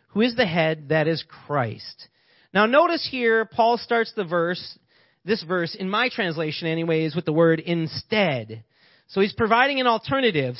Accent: American